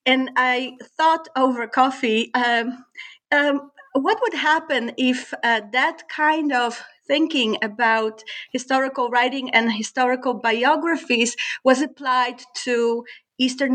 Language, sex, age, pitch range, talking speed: English, female, 40-59, 230-280 Hz, 115 wpm